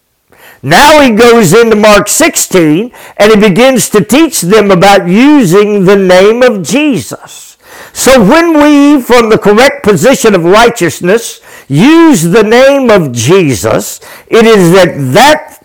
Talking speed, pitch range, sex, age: 140 wpm, 200-270 Hz, male, 60-79